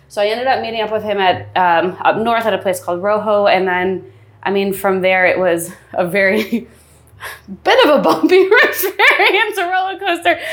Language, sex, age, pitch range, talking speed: English, female, 20-39, 180-225 Hz, 200 wpm